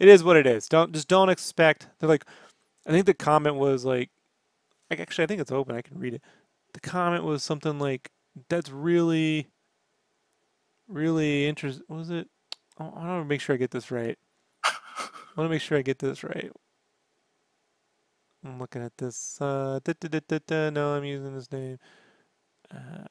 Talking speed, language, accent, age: 190 wpm, English, American, 30-49